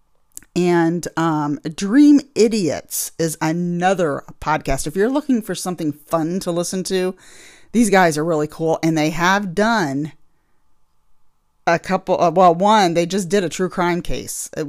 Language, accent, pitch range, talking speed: English, American, 155-190 Hz, 155 wpm